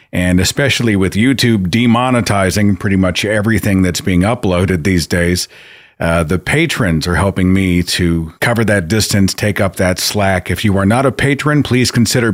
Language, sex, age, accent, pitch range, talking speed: English, male, 40-59, American, 90-125 Hz, 170 wpm